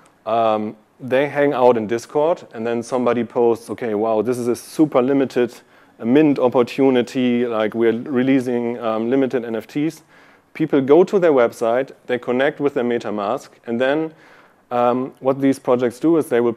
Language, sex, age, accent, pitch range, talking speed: English, male, 30-49, German, 110-130 Hz, 165 wpm